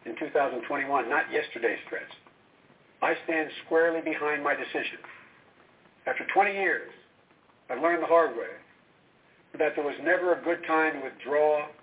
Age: 60-79